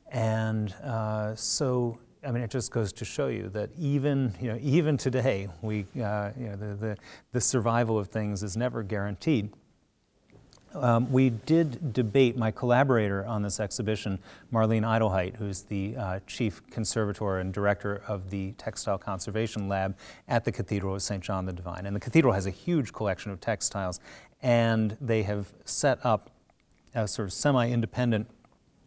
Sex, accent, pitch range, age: male, American, 100-120 Hz, 30-49